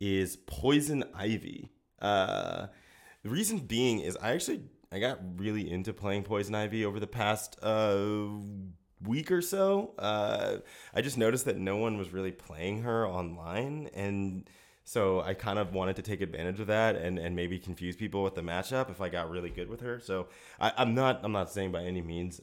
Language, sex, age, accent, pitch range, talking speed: English, male, 20-39, American, 95-115 Hz, 195 wpm